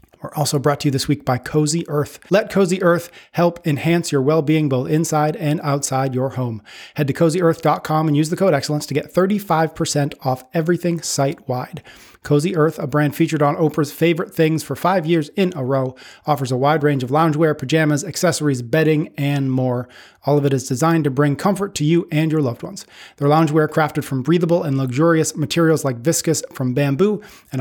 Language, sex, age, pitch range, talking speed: English, male, 30-49, 140-165 Hz, 195 wpm